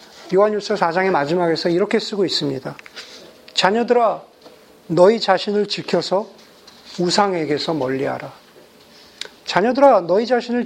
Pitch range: 175-225 Hz